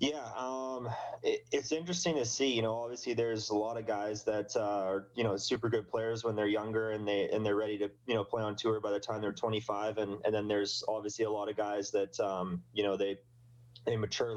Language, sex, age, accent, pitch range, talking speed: English, male, 20-39, American, 100-115 Hz, 240 wpm